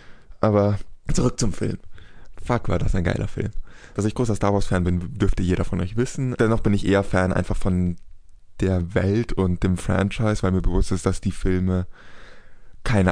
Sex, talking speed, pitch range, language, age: male, 190 wpm, 95-110 Hz, German, 20-39